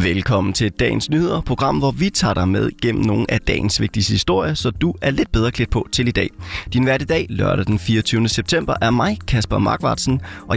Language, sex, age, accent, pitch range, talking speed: Danish, male, 30-49, native, 100-130 Hz, 210 wpm